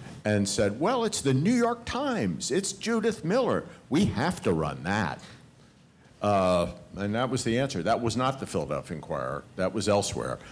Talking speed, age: 175 wpm, 60-79